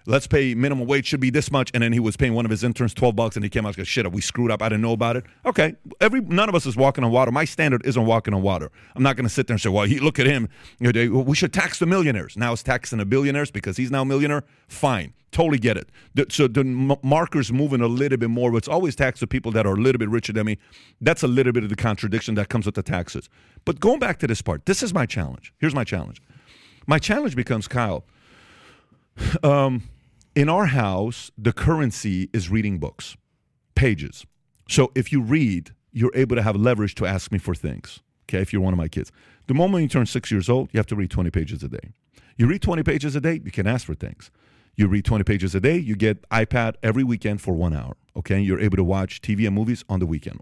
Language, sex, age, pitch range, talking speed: English, male, 40-59, 105-135 Hz, 255 wpm